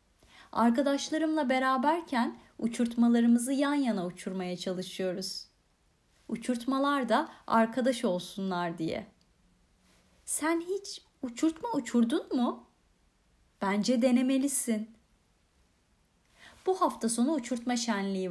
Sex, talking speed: female, 80 wpm